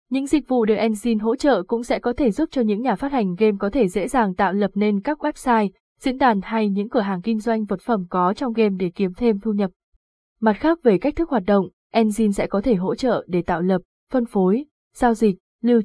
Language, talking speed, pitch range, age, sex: Vietnamese, 250 wpm, 195-240 Hz, 20-39, female